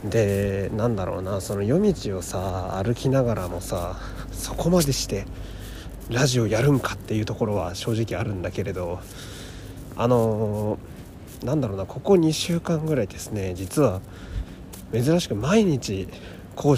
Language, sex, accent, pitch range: Japanese, male, native, 95-130 Hz